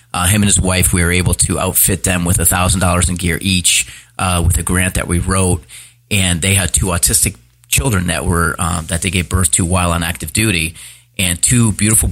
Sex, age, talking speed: male, 30-49, 230 wpm